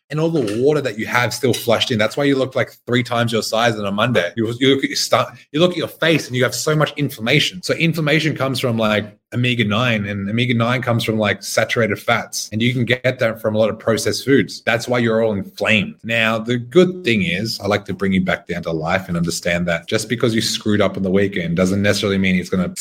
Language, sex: English, male